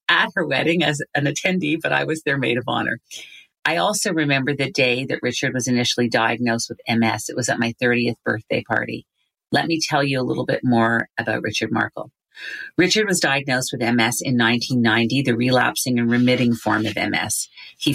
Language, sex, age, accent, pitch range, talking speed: English, female, 40-59, American, 120-135 Hz, 195 wpm